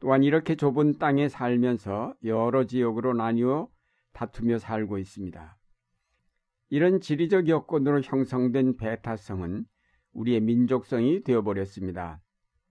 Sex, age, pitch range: male, 60-79, 115-135 Hz